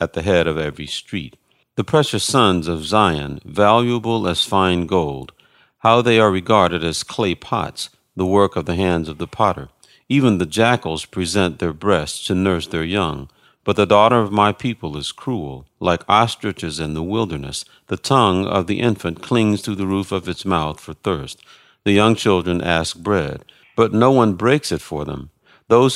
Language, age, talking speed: English, 50-69, 185 wpm